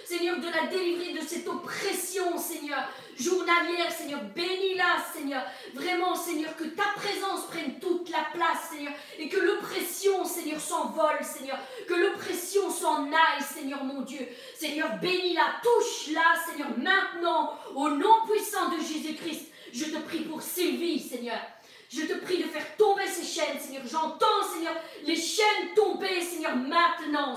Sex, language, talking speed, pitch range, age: female, French, 145 wpm, 300-360 Hz, 40-59